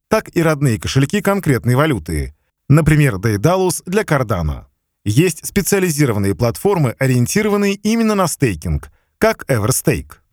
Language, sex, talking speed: Russian, male, 110 wpm